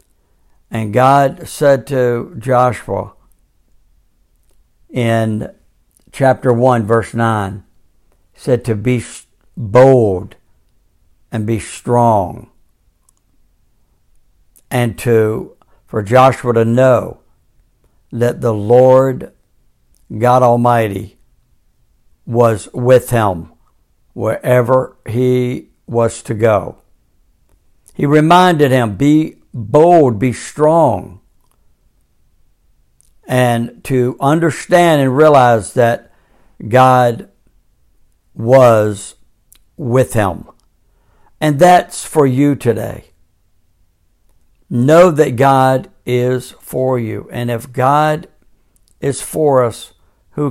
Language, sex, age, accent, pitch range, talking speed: Spanish, male, 60-79, American, 105-130 Hz, 85 wpm